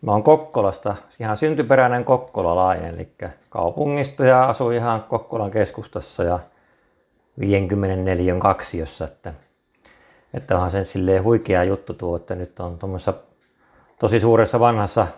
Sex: male